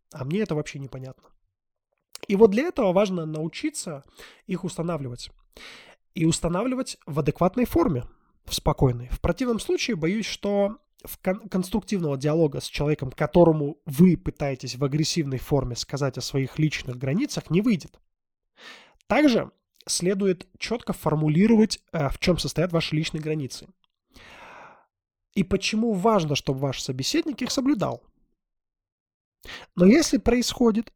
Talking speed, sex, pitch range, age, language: 125 wpm, male, 140-195 Hz, 20-39, Russian